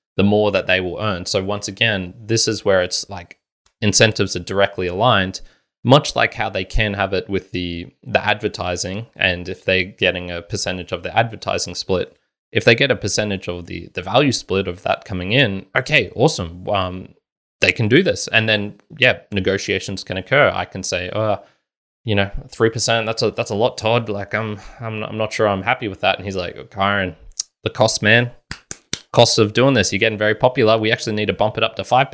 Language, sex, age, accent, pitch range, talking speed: English, male, 20-39, Australian, 95-115 Hz, 215 wpm